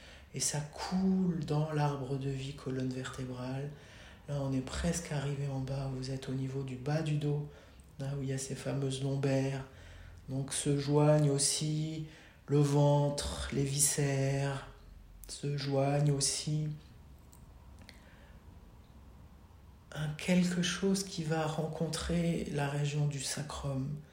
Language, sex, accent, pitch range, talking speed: French, male, French, 130-150 Hz, 130 wpm